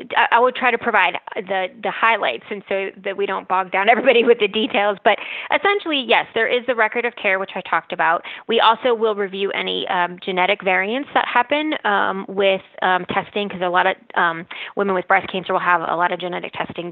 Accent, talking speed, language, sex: American, 220 wpm, English, female